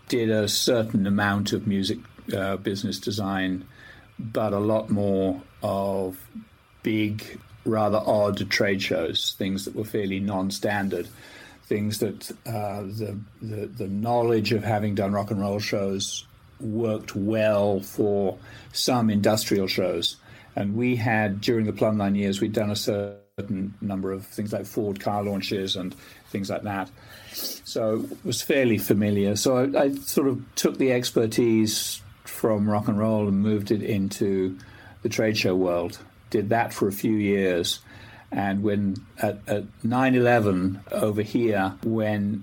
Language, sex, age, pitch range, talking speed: English, male, 50-69, 100-110 Hz, 150 wpm